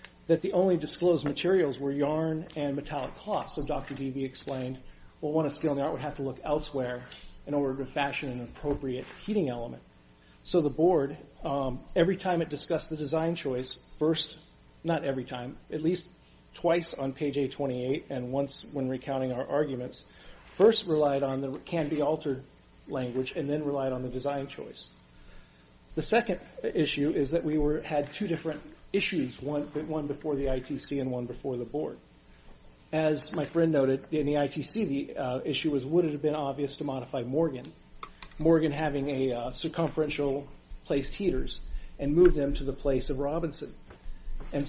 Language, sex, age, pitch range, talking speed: English, male, 40-59, 135-155 Hz, 175 wpm